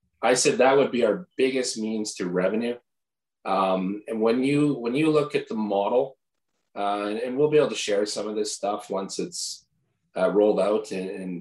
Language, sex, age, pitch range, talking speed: English, male, 30-49, 100-130 Hz, 200 wpm